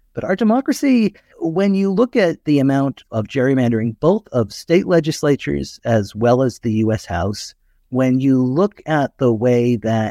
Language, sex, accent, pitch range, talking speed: English, male, American, 100-125 Hz, 165 wpm